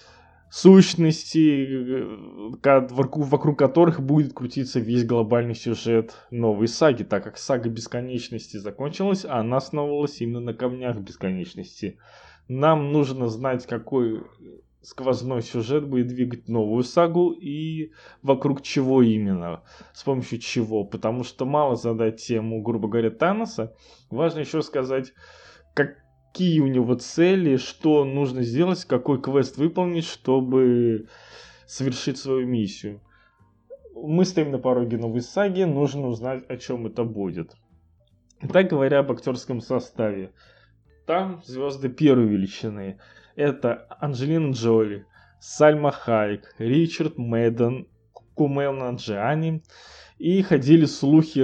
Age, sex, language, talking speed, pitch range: 20-39, male, Russian, 115 wpm, 115-145 Hz